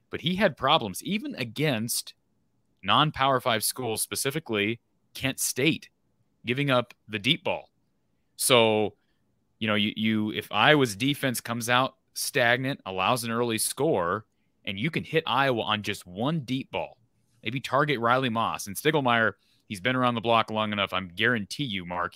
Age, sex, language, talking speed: 30-49, male, English, 160 wpm